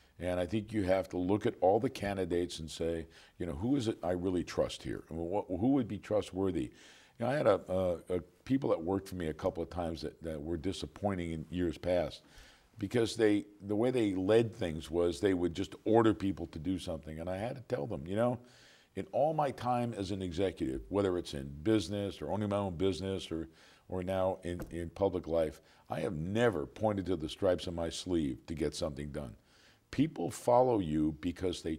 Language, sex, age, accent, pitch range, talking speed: English, male, 50-69, American, 85-105 Hz, 215 wpm